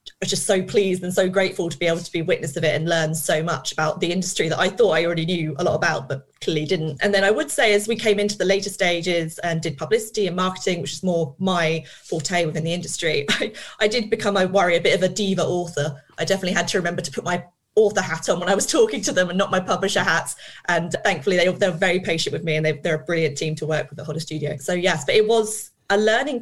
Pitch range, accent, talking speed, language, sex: 160-190 Hz, British, 275 wpm, English, female